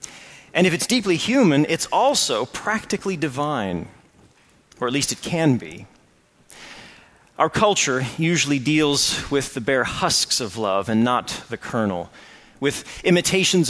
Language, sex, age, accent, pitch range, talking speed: English, male, 40-59, American, 135-200 Hz, 135 wpm